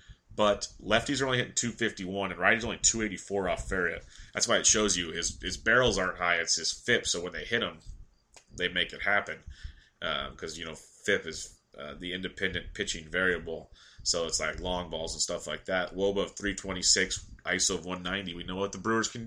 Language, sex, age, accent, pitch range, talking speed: English, male, 30-49, American, 90-105 Hz, 205 wpm